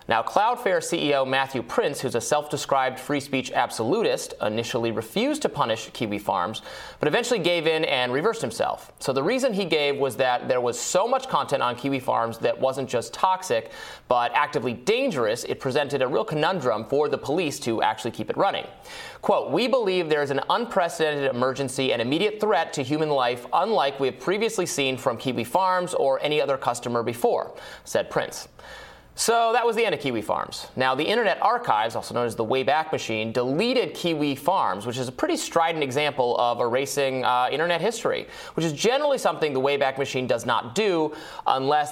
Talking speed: 190 wpm